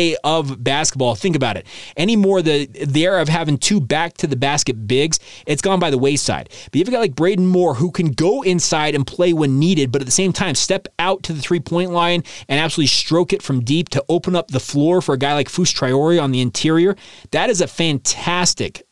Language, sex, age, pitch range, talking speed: English, male, 30-49, 135-165 Hz, 225 wpm